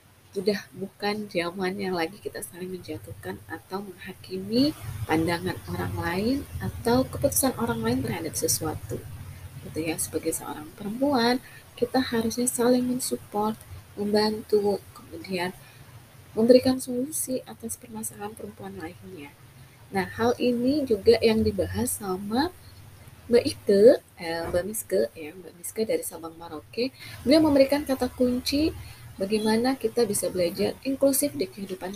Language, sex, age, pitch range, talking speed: Indonesian, female, 20-39, 170-250 Hz, 120 wpm